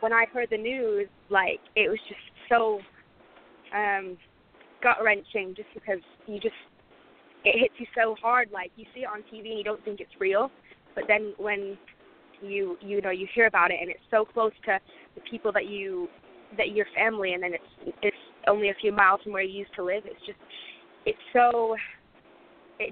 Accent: American